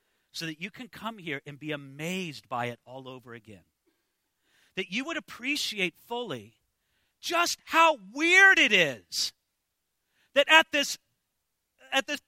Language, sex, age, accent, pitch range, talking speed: English, male, 40-59, American, 220-330 Hz, 135 wpm